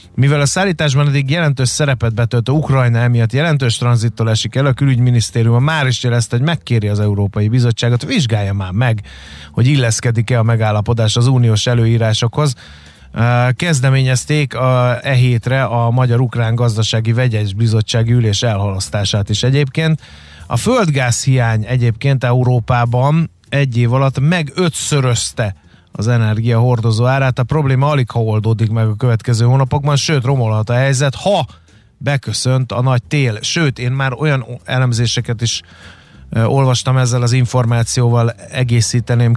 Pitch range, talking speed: 115-130 Hz, 135 wpm